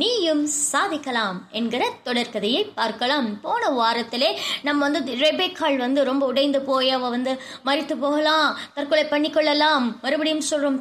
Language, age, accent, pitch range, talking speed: Tamil, 20-39, native, 270-350 Hz, 130 wpm